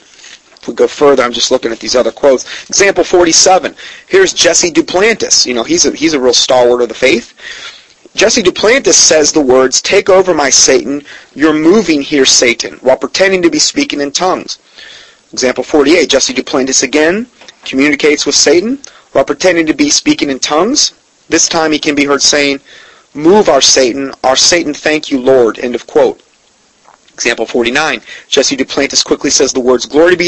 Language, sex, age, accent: English, male, 30-49, American